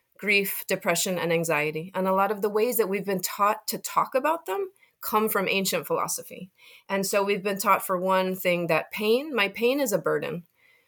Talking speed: 205 wpm